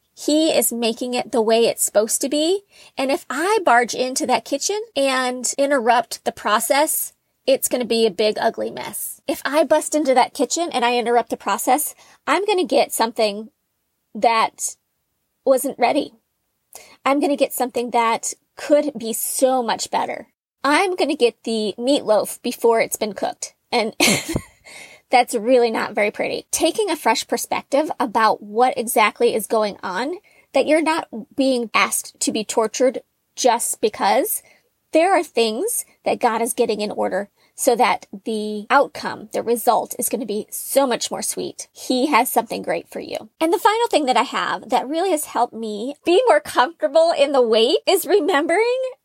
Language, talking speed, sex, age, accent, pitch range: English, 175 wpm, female, 30-49, American, 230-305 Hz